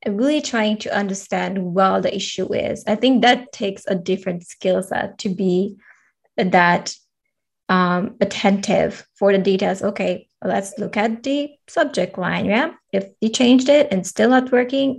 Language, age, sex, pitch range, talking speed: English, 20-39, female, 195-230 Hz, 160 wpm